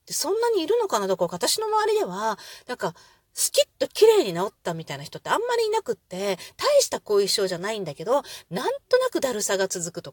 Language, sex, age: Japanese, female, 30-49